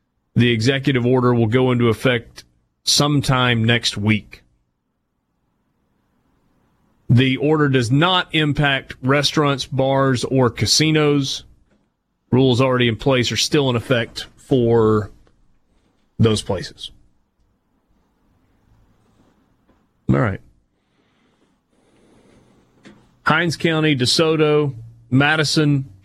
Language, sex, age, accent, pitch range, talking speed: English, male, 30-49, American, 115-150 Hz, 85 wpm